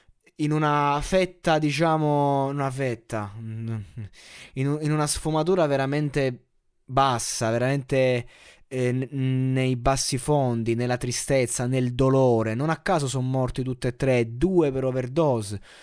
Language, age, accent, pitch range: Italian, 20-39, native, 125-170 Hz